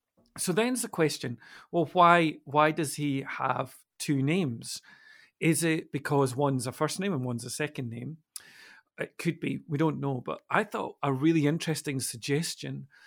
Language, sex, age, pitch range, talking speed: English, male, 40-59, 135-170 Hz, 170 wpm